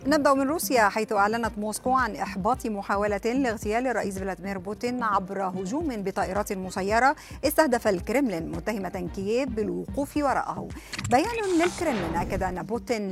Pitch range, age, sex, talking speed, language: 195-245 Hz, 50-69, female, 130 wpm, Arabic